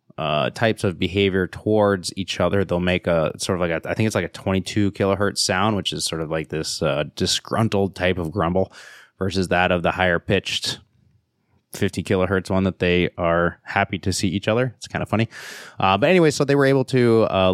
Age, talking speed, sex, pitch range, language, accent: 20-39, 215 wpm, male, 95-115 Hz, English, American